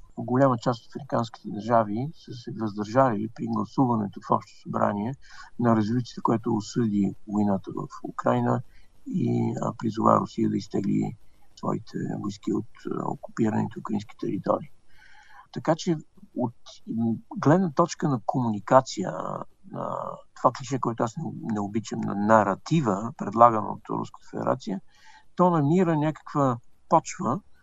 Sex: male